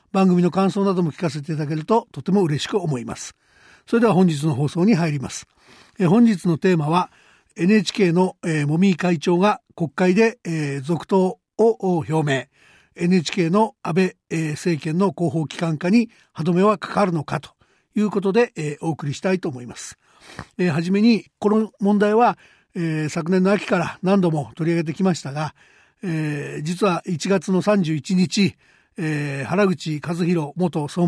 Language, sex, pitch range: Japanese, male, 160-195 Hz